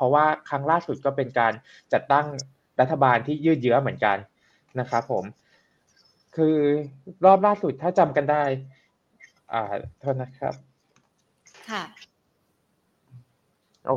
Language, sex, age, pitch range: Thai, male, 20-39, 125-155 Hz